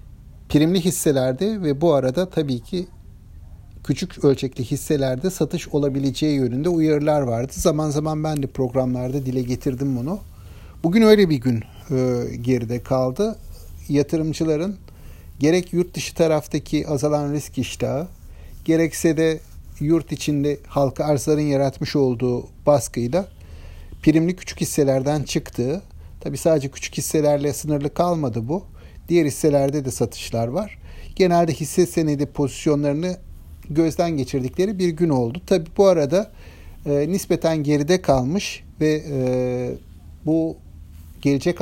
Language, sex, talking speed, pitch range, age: Turkish, male, 120 wpm, 125-165 Hz, 60-79